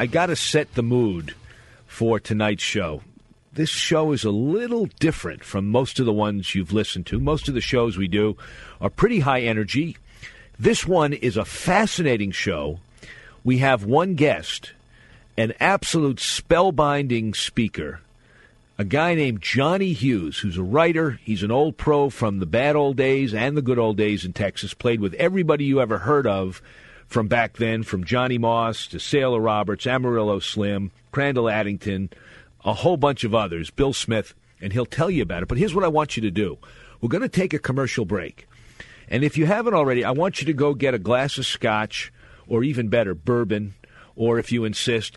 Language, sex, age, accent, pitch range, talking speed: English, male, 50-69, American, 105-140 Hz, 190 wpm